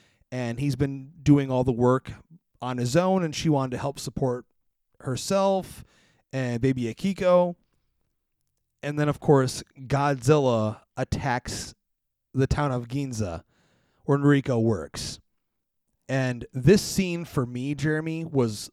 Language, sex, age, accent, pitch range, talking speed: English, male, 30-49, American, 125-155 Hz, 130 wpm